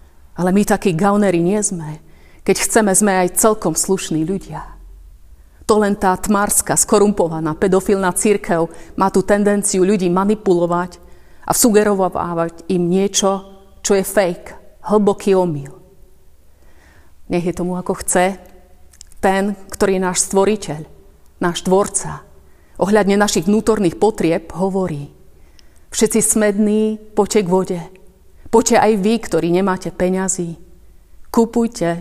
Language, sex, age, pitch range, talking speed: Slovak, female, 30-49, 165-210 Hz, 120 wpm